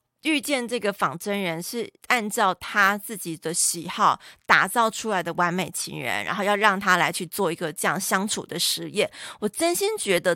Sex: female